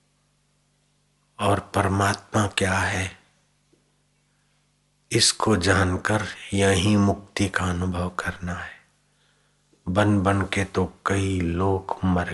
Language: Hindi